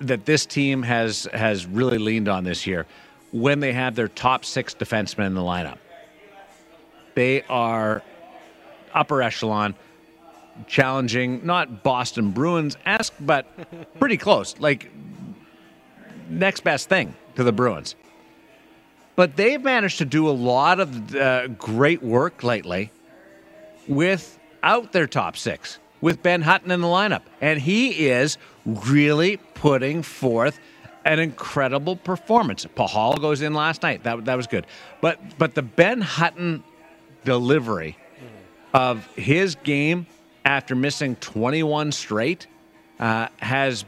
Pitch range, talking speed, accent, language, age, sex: 120-160 Hz, 125 wpm, American, English, 50-69, male